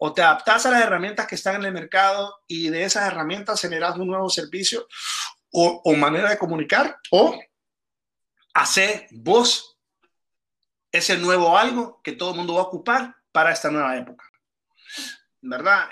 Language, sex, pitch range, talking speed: Spanish, male, 155-195 Hz, 160 wpm